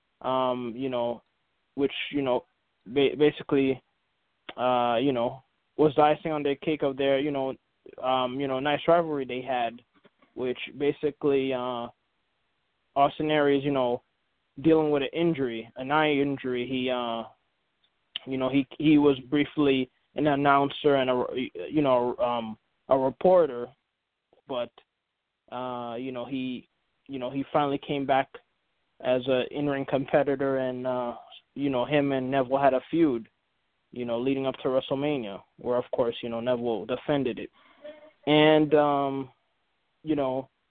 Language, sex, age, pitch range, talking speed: English, male, 20-39, 130-150 Hz, 145 wpm